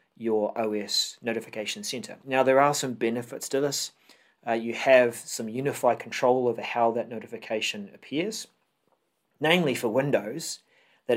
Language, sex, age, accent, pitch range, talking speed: English, male, 30-49, Australian, 110-140 Hz, 140 wpm